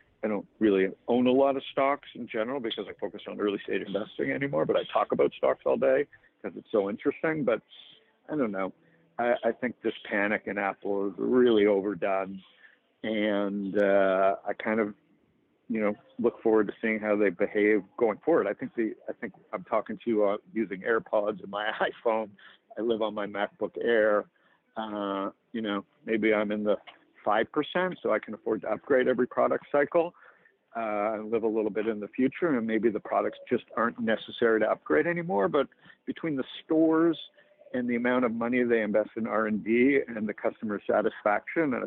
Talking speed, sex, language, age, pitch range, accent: 190 wpm, male, English, 60-79, 105-125 Hz, American